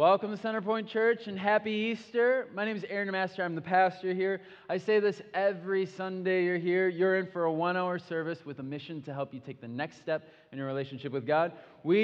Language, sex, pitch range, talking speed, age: English, male, 135-185 Hz, 225 wpm, 20-39